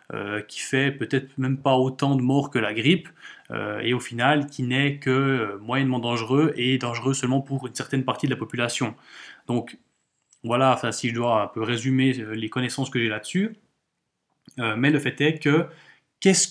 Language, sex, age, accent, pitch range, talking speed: French, male, 20-39, French, 130-155 Hz, 185 wpm